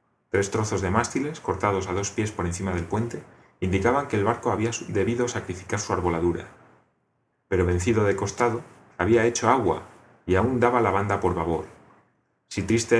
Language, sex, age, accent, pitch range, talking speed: Spanish, male, 30-49, Spanish, 95-115 Hz, 170 wpm